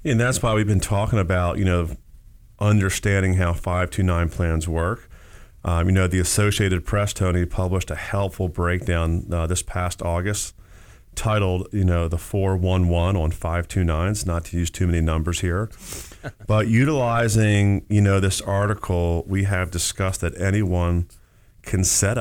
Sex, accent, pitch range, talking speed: male, American, 85-105 Hz, 160 wpm